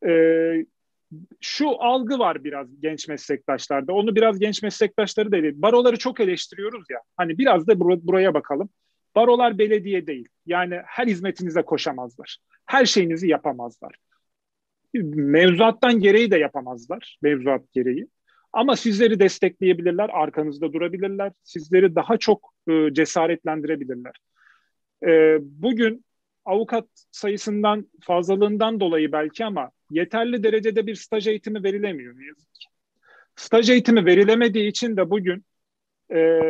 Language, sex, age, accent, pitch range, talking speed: Turkish, male, 40-59, native, 160-215 Hz, 115 wpm